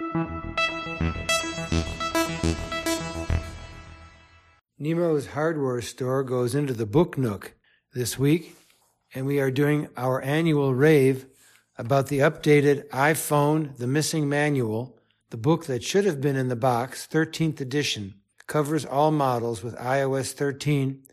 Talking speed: 115 wpm